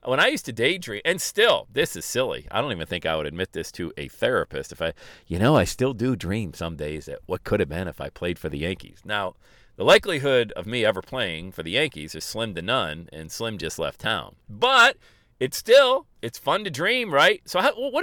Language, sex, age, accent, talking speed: English, male, 40-59, American, 235 wpm